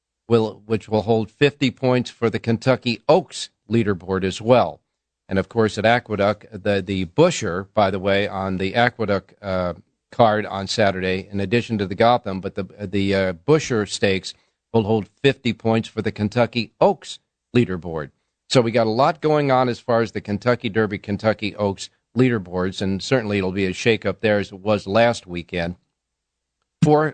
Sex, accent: male, American